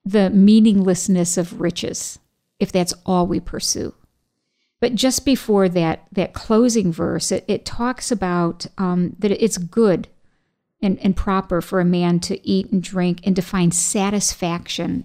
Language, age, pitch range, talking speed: English, 50-69, 180-210 Hz, 150 wpm